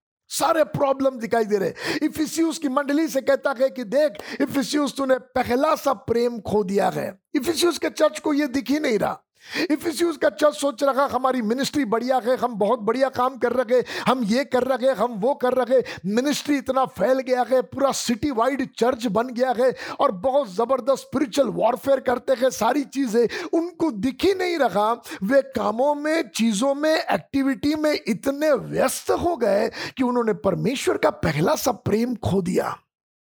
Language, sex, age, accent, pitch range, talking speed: Hindi, male, 50-69, native, 240-295 Hz, 160 wpm